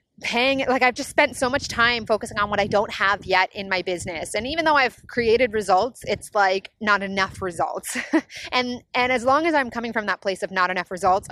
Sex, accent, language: female, American, English